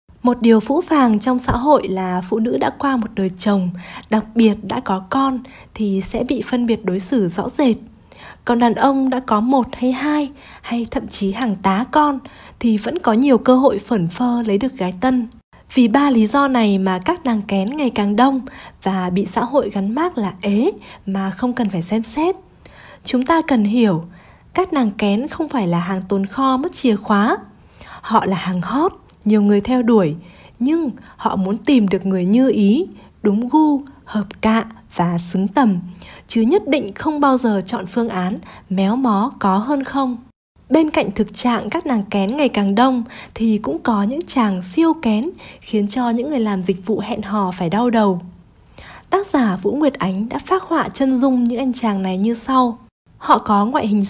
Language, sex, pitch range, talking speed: Vietnamese, female, 200-265 Hz, 205 wpm